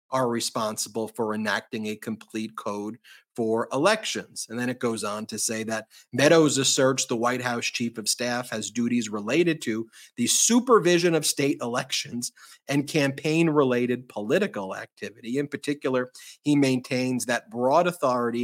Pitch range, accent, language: 120-155 Hz, American, English